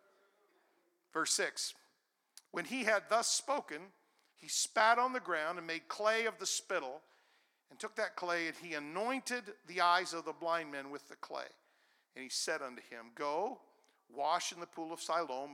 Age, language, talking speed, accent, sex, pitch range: 50-69, English, 180 wpm, American, male, 145-195 Hz